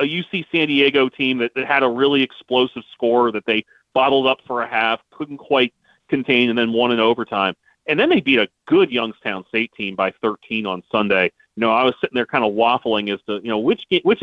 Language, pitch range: English, 110-135 Hz